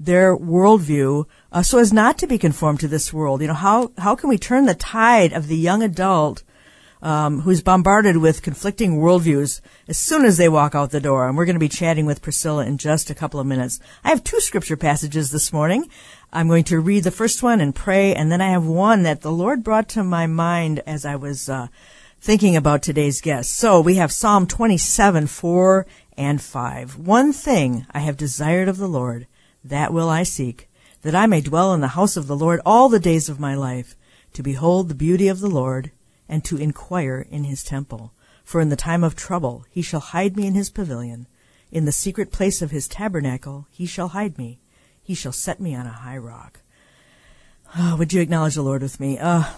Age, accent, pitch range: 50-69, American, 145-190 Hz